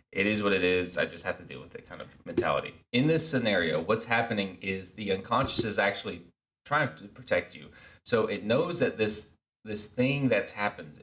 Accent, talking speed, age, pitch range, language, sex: American, 205 wpm, 30-49, 90-115 Hz, English, male